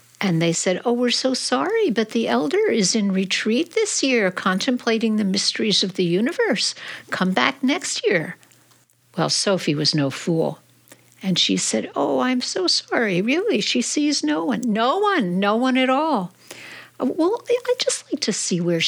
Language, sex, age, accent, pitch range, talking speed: English, female, 60-79, American, 180-280 Hz, 180 wpm